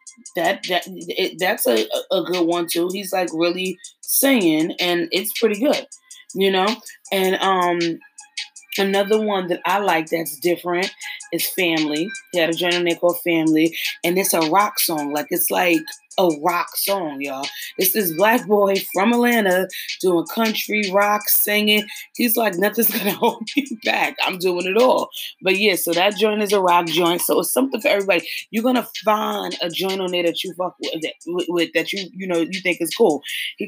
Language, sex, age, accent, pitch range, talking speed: English, female, 20-39, American, 170-210 Hz, 190 wpm